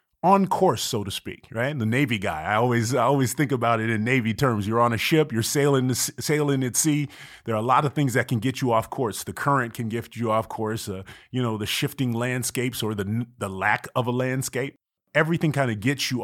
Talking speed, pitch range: 240 wpm, 110-140 Hz